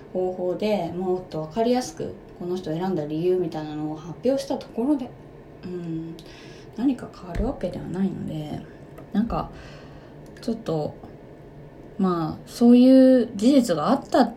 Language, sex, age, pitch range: Japanese, female, 20-39, 165-220 Hz